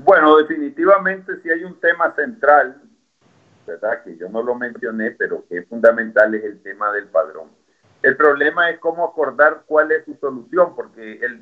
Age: 50-69